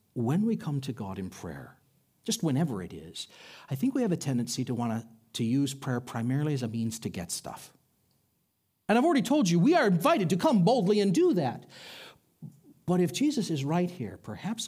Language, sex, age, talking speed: English, male, 50-69, 205 wpm